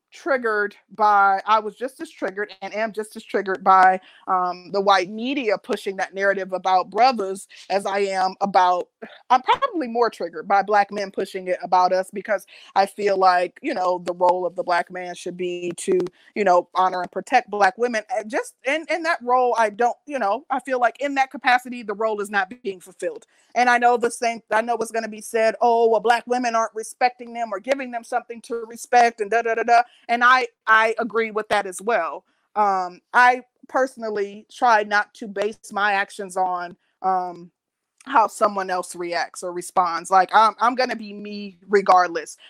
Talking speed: 200 wpm